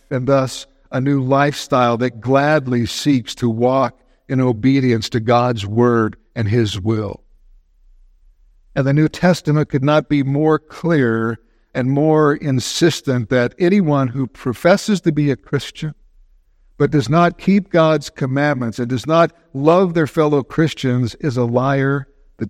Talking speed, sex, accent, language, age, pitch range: 145 wpm, male, American, English, 60-79, 110-150 Hz